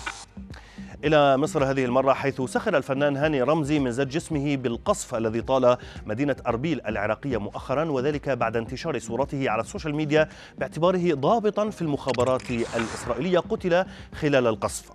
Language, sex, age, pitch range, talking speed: Arabic, male, 30-49, 115-150 Hz, 135 wpm